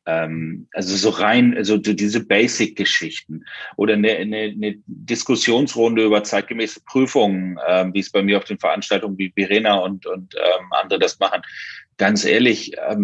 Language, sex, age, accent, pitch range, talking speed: German, male, 40-59, German, 110-140 Hz, 145 wpm